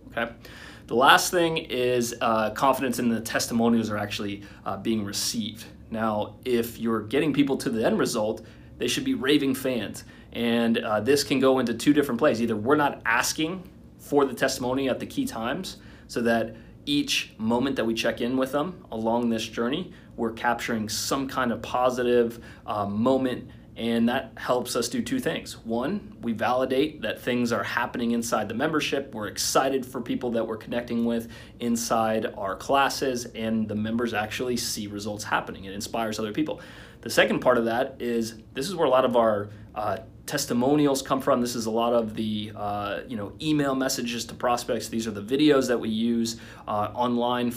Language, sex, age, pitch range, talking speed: English, male, 30-49, 110-130 Hz, 185 wpm